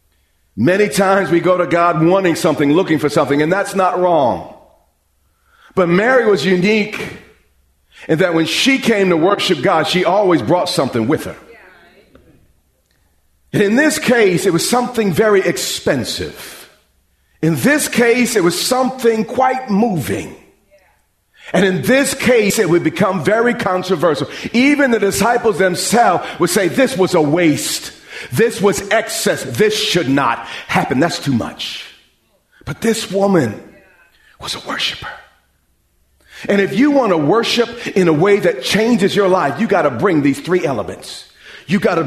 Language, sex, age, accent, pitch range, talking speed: English, male, 40-59, American, 160-230 Hz, 155 wpm